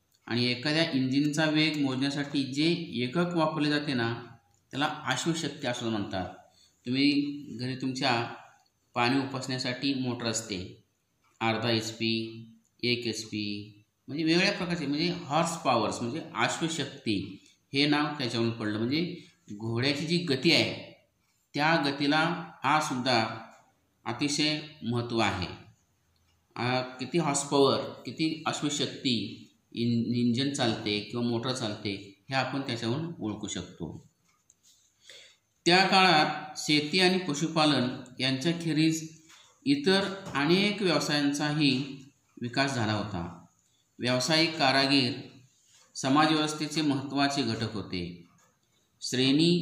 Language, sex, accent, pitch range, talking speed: Marathi, male, native, 115-150 Hz, 90 wpm